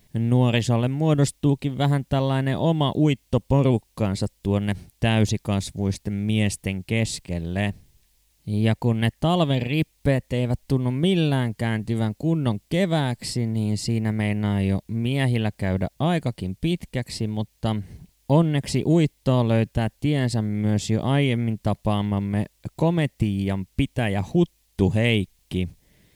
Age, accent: 20-39, native